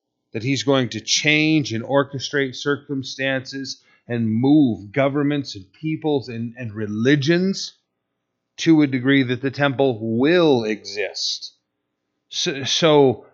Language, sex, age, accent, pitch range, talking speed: English, male, 40-59, American, 115-155 Hz, 115 wpm